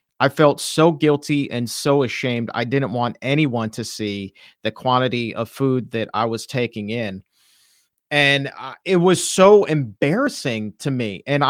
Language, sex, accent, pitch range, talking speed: English, male, American, 120-145 Hz, 155 wpm